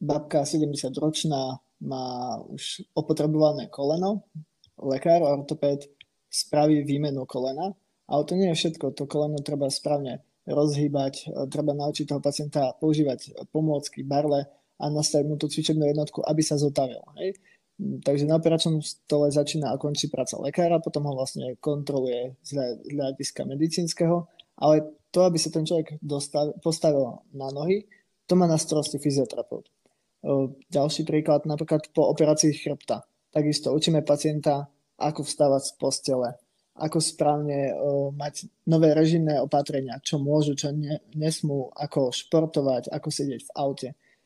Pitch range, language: 140-155 Hz, Slovak